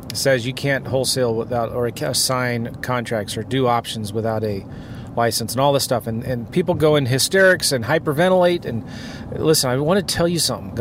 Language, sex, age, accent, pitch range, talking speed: English, male, 30-49, American, 125-160 Hz, 190 wpm